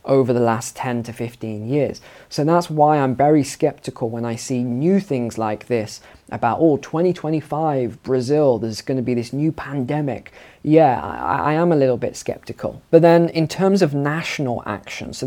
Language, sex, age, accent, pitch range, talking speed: English, male, 20-39, British, 125-160 Hz, 185 wpm